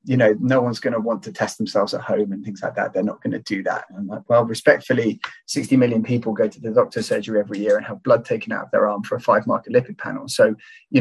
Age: 30-49